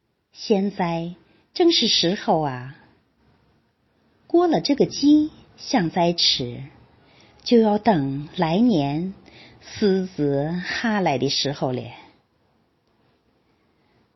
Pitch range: 150-245 Hz